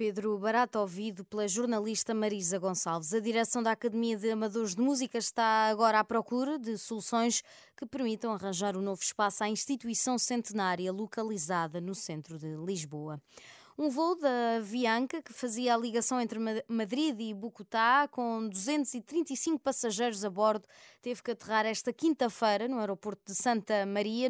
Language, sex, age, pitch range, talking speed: Portuguese, female, 20-39, 205-240 Hz, 155 wpm